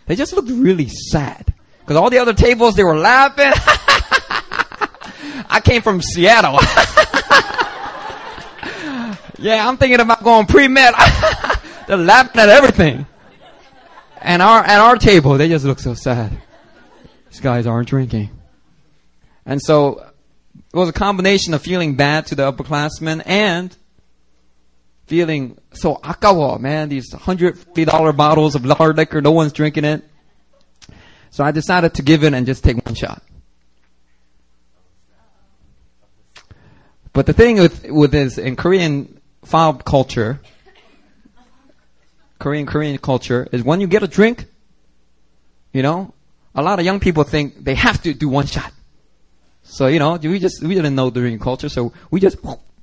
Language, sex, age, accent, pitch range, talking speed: English, male, 30-49, American, 125-180 Hz, 145 wpm